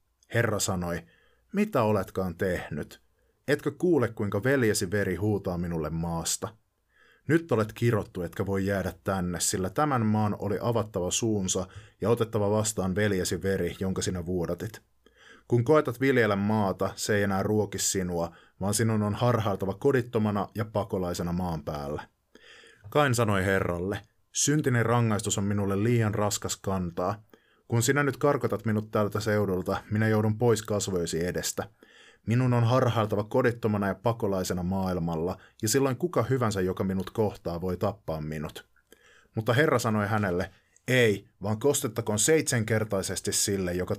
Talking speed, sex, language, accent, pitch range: 140 wpm, male, Finnish, native, 95-115 Hz